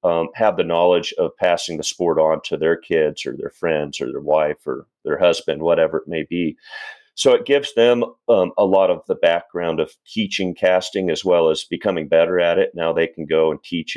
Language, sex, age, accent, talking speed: English, male, 40-59, American, 220 wpm